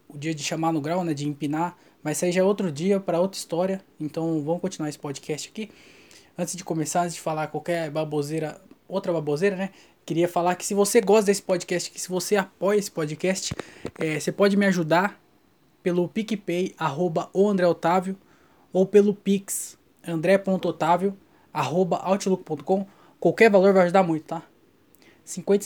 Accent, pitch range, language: Brazilian, 160-195 Hz, Portuguese